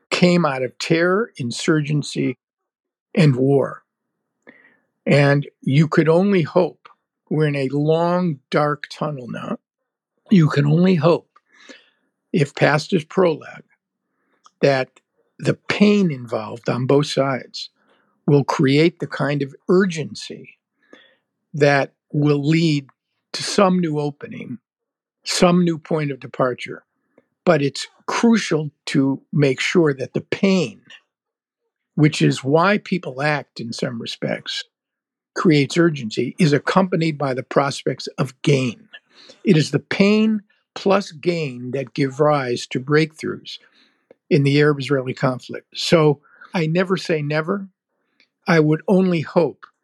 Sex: male